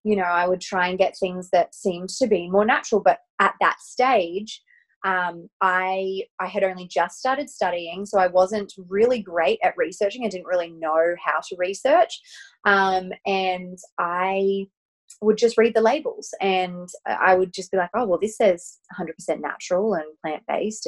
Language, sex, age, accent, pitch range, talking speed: English, female, 20-39, Australian, 180-215 Hz, 180 wpm